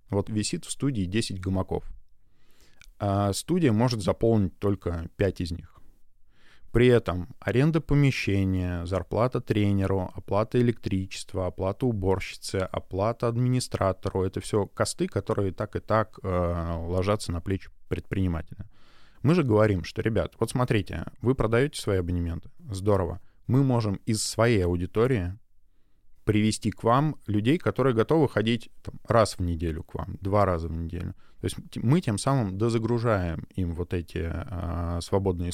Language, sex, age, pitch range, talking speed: Russian, male, 20-39, 90-115 Hz, 135 wpm